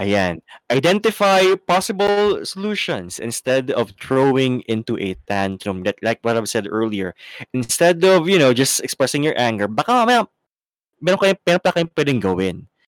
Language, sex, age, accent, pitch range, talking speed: English, male, 20-39, Filipino, 105-155 Hz, 130 wpm